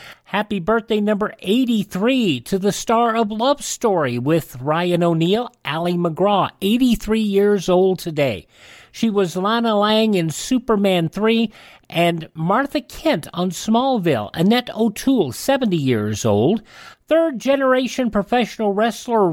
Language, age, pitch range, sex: English, 50-69, 150-225 Hz, male